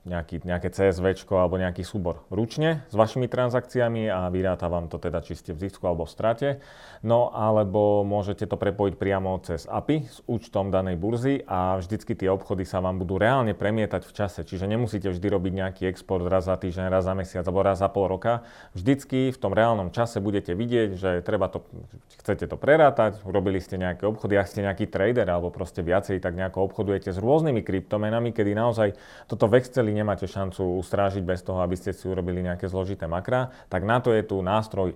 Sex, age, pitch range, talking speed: male, 30-49, 95-115 Hz, 195 wpm